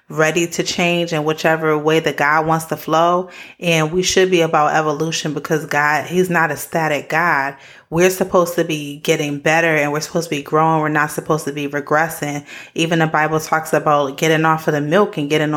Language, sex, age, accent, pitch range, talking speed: English, female, 30-49, American, 155-185 Hz, 210 wpm